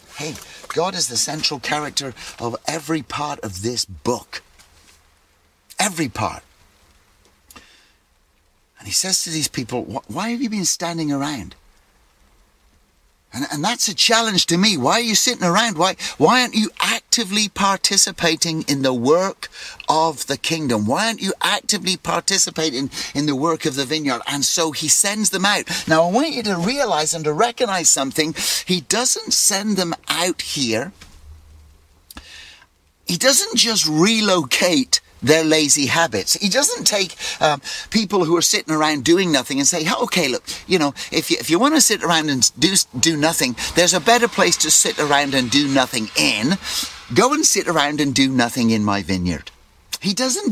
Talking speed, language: 165 wpm, English